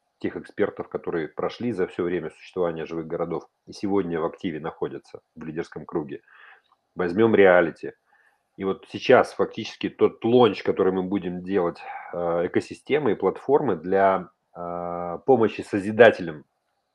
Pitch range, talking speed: 95-115 Hz, 125 wpm